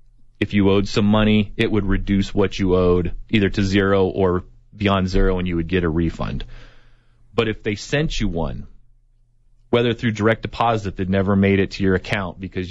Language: English